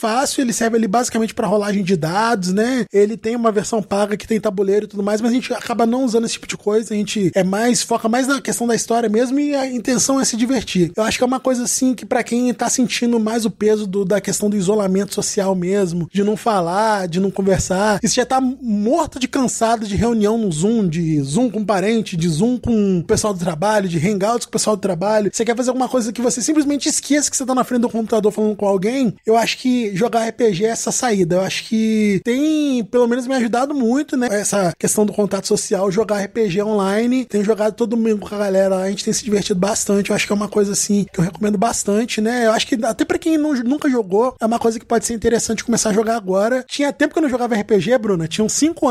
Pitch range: 205-245 Hz